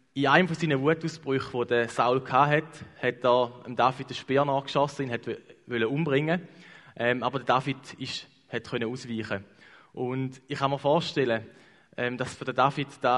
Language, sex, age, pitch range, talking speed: English, male, 20-39, 120-145 Hz, 155 wpm